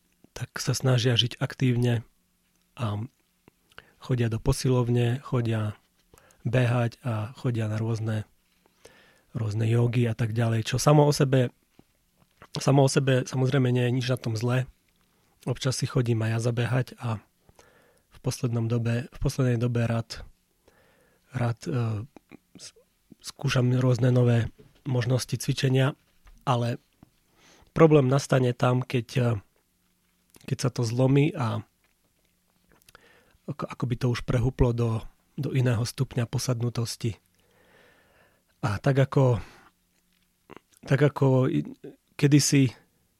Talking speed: 110 wpm